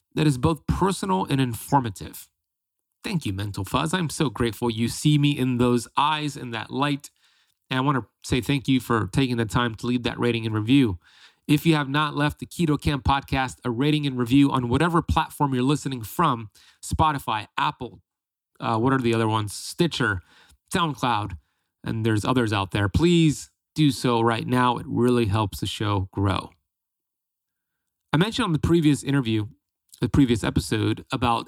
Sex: male